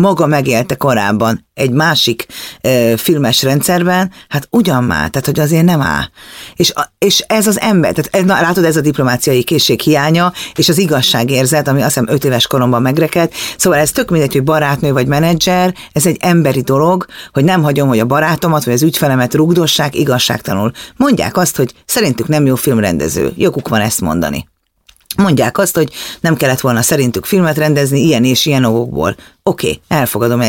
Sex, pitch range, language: female, 125-155 Hz, Hungarian